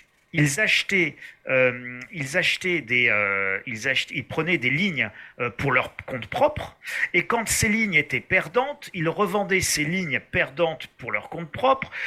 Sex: male